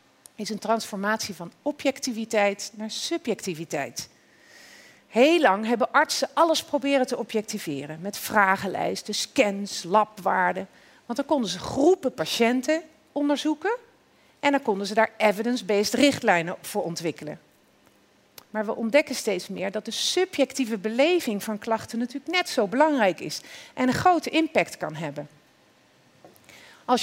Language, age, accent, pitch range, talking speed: Dutch, 40-59, Dutch, 210-290 Hz, 130 wpm